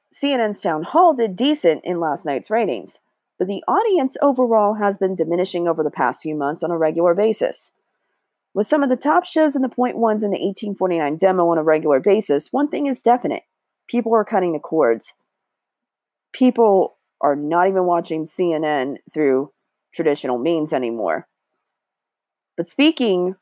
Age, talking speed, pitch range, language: 40-59, 160 wpm, 160-240 Hz, English